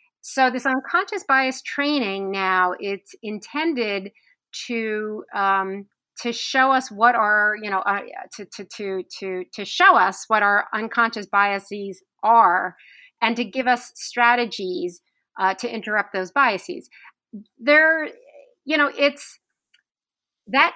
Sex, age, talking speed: female, 40-59, 130 wpm